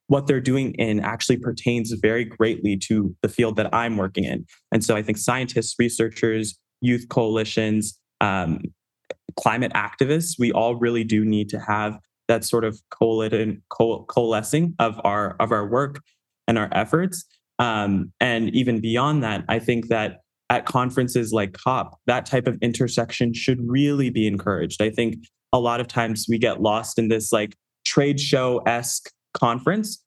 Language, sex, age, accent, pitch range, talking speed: English, male, 20-39, American, 110-130 Hz, 160 wpm